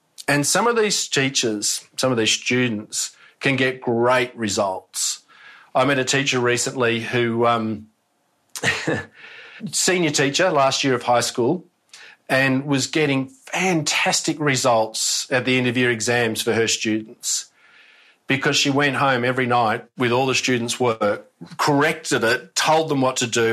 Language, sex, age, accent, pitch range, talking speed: English, male, 40-59, Australian, 115-135 Hz, 145 wpm